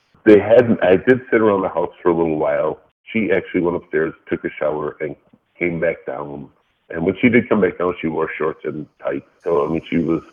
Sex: female